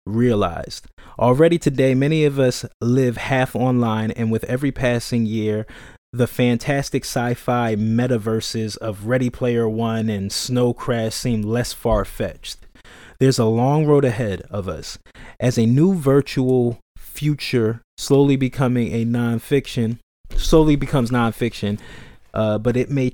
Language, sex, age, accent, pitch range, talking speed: English, male, 20-39, American, 110-130 Hz, 130 wpm